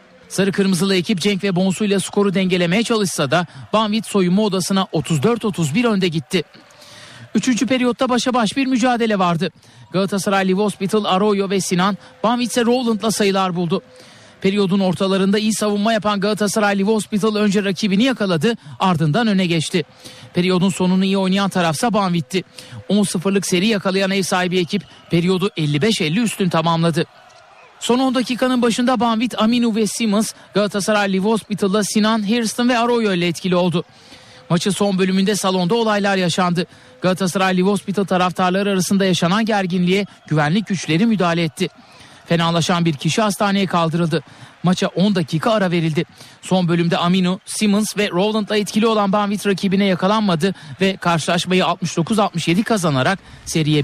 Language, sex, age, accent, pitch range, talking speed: Turkish, male, 60-79, native, 175-210 Hz, 140 wpm